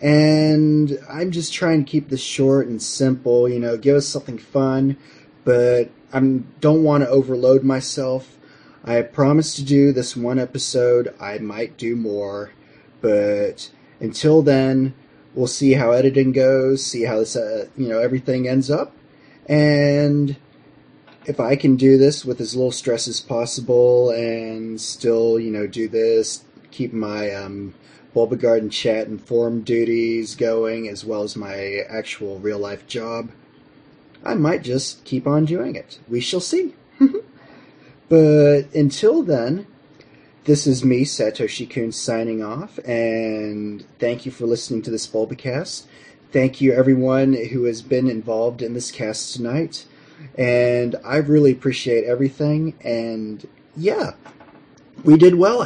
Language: English